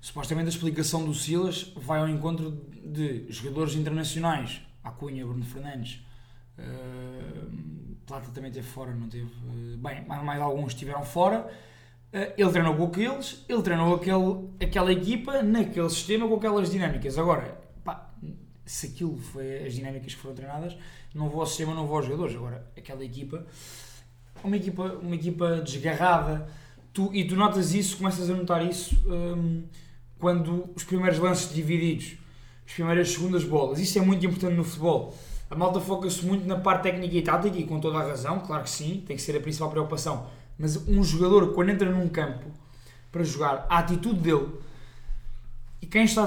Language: Portuguese